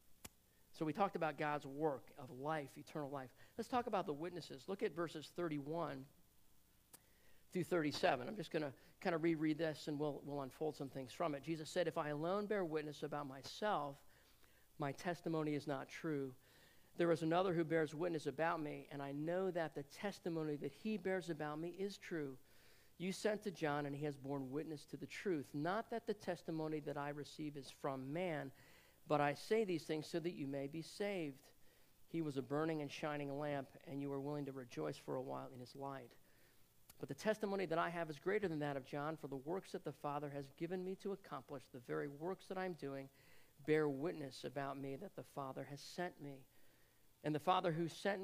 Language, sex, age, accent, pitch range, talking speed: English, male, 50-69, American, 140-175 Hz, 205 wpm